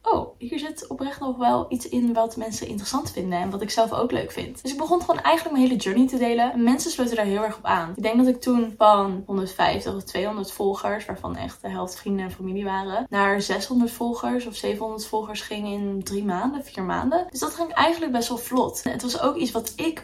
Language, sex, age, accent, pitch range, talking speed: Dutch, female, 20-39, Dutch, 200-235 Hz, 235 wpm